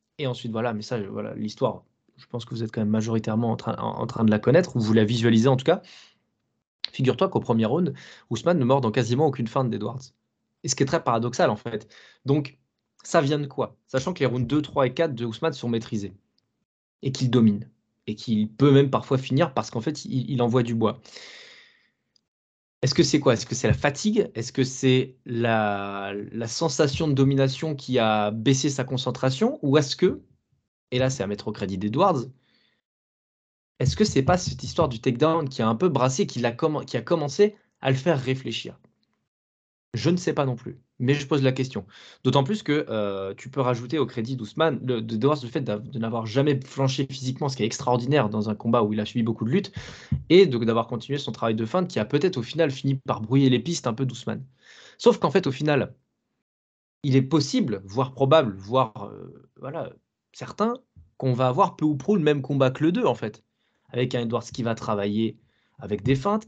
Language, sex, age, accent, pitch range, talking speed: French, male, 20-39, French, 115-145 Hz, 215 wpm